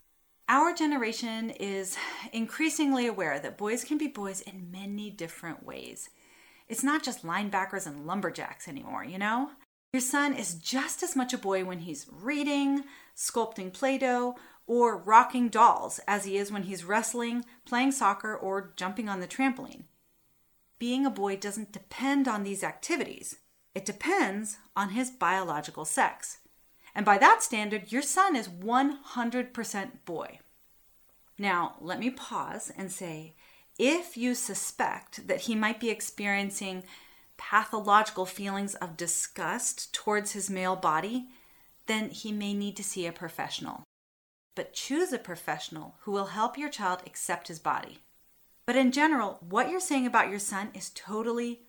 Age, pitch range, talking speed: 30-49, 195-255 Hz, 150 wpm